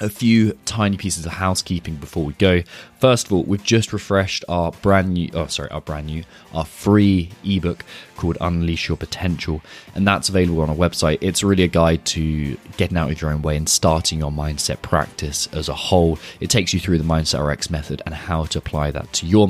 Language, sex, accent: English, male, British